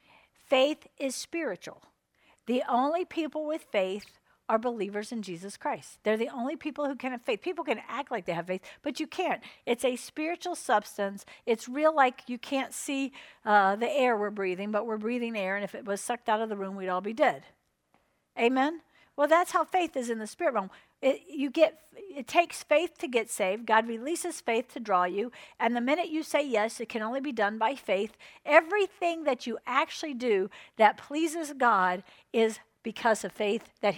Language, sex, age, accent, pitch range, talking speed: English, female, 50-69, American, 215-310 Hz, 200 wpm